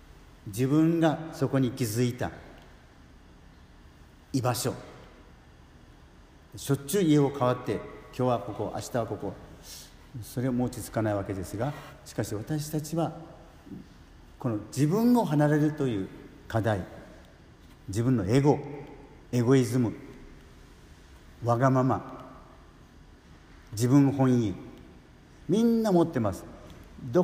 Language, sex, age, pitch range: Japanese, male, 50-69, 90-145 Hz